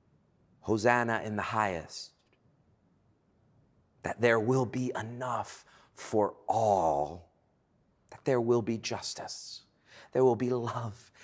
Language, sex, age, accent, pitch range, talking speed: English, male, 30-49, American, 130-185 Hz, 105 wpm